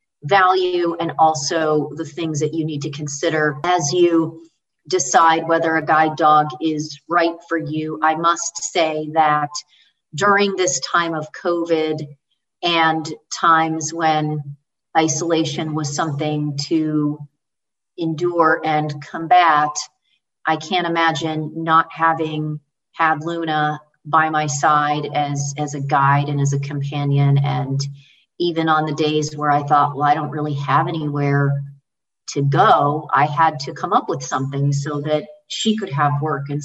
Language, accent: English, American